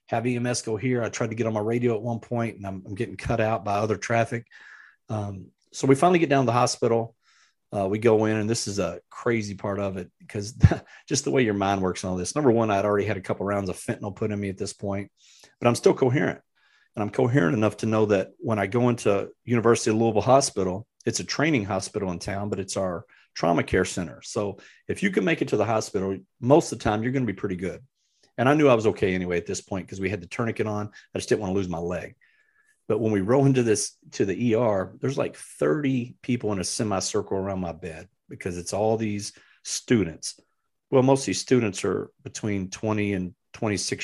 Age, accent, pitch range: 40-59, American, 95-120 Hz